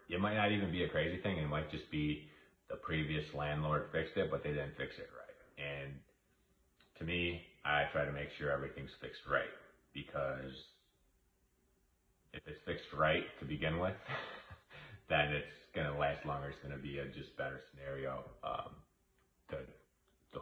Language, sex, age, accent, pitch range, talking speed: English, male, 30-49, American, 70-80 Hz, 170 wpm